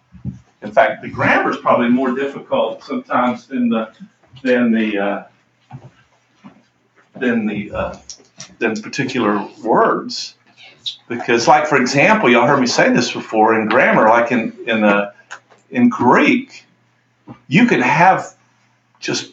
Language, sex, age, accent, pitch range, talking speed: English, male, 50-69, American, 120-155 Hz, 130 wpm